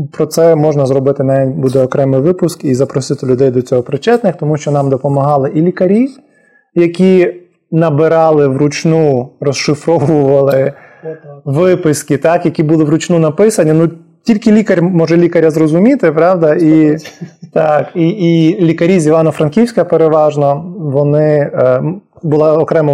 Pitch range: 135-165 Hz